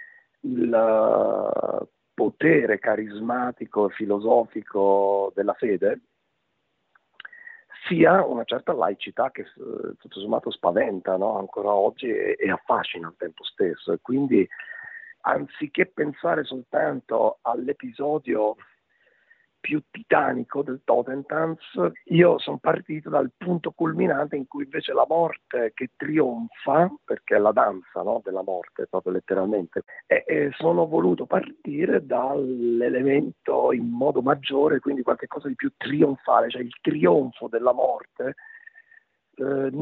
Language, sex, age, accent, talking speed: Italian, male, 50-69, native, 110 wpm